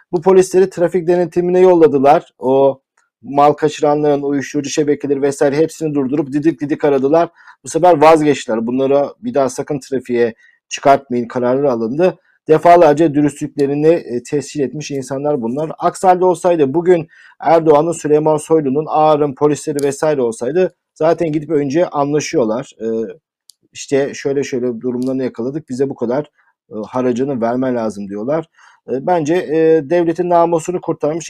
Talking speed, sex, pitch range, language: 125 wpm, male, 140-165 Hz, Turkish